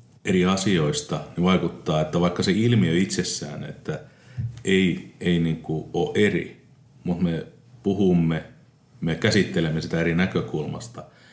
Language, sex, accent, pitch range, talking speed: Finnish, male, native, 80-95 Hz, 110 wpm